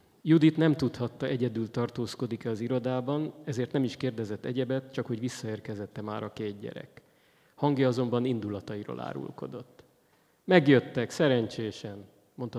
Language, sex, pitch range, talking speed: Hungarian, male, 110-150 Hz, 125 wpm